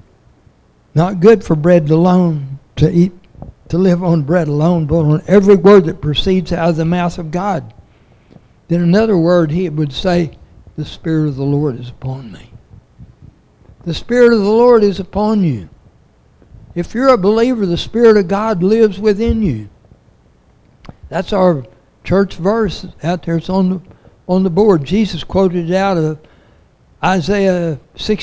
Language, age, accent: English, 60-79, American